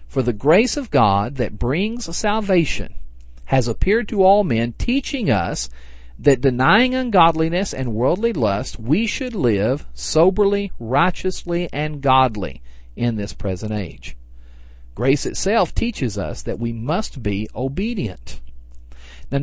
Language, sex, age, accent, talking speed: English, male, 50-69, American, 130 wpm